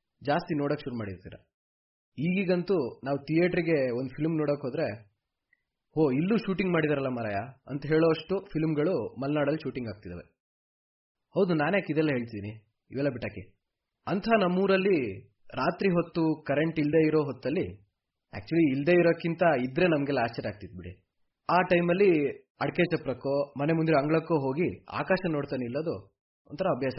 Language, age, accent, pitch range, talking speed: Kannada, 20-39, native, 110-165 Hz, 130 wpm